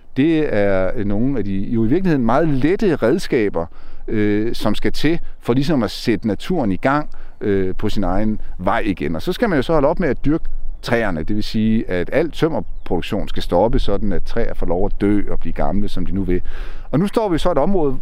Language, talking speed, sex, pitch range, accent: Danish, 225 wpm, male, 100-135 Hz, native